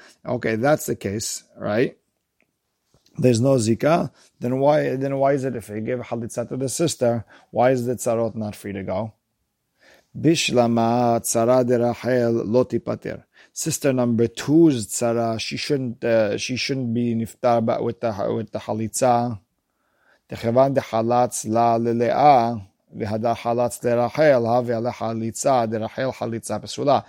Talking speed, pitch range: 115 wpm, 115-130 Hz